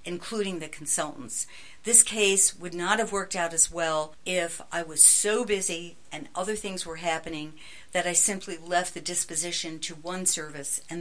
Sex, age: female, 60-79